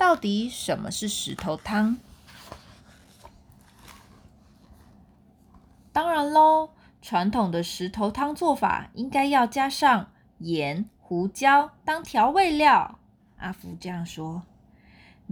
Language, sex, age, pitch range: Chinese, female, 20-39, 170-285 Hz